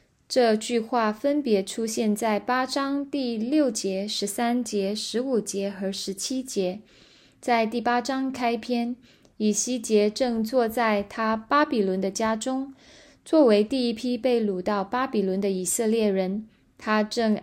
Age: 20-39